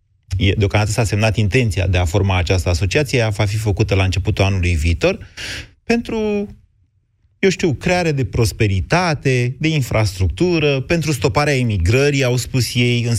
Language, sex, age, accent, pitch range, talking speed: Romanian, male, 30-49, native, 100-140 Hz, 145 wpm